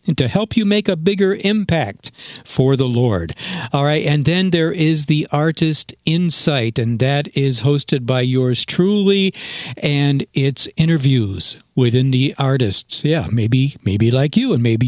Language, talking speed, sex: English, 155 wpm, male